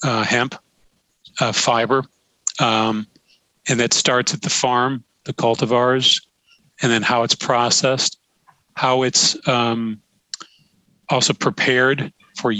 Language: English